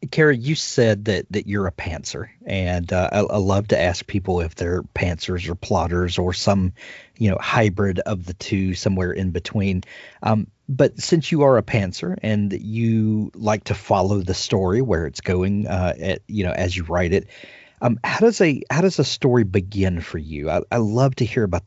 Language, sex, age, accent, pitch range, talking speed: English, male, 40-59, American, 90-115 Hz, 205 wpm